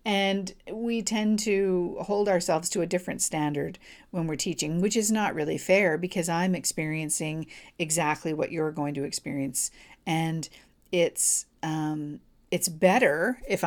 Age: 50-69